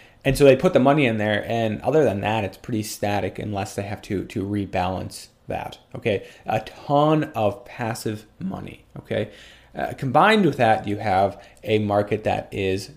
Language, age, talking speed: English, 30-49, 180 wpm